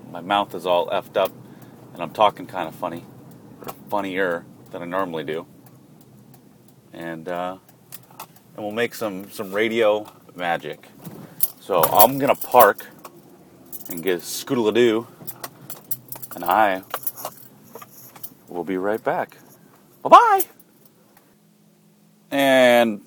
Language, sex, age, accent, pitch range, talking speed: English, male, 30-49, American, 95-160 Hz, 115 wpm